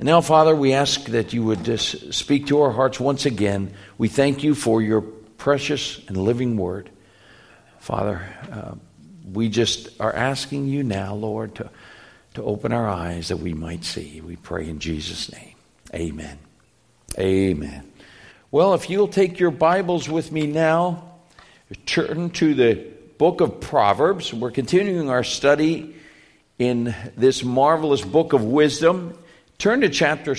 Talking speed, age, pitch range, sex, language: 150 wpm, 60-79, 110-155 Hz, male, English